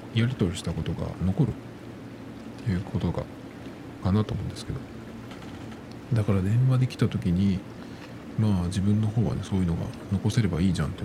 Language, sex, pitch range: Japanese, male, 95-130 Hz